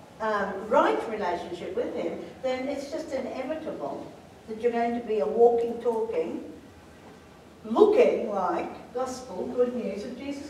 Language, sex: English, female